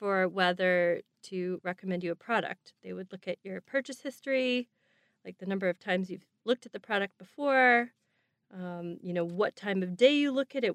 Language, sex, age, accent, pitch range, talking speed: English, female, 30-49, American, 185-250 Hz, 200 wpm